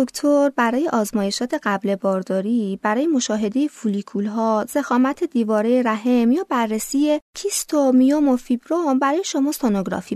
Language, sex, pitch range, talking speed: Persian, female, 210-280 Hz, 125 wpm